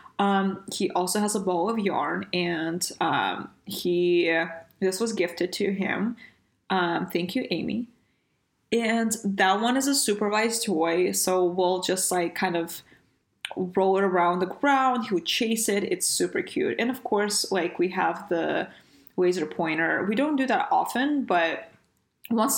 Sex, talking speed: female, 165 wpm